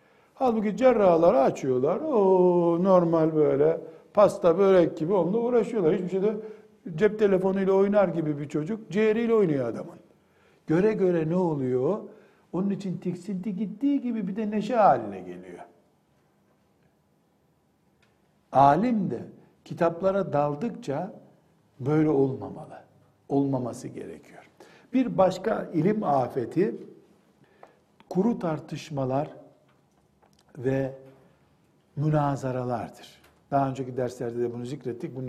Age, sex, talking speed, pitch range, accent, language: 60-79, male, 100 wpm, 140-195 Hz, native, Turkish